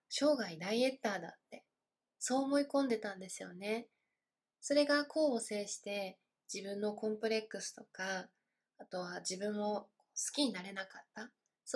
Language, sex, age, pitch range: Japanese, female, 20-39, 195-230 Hz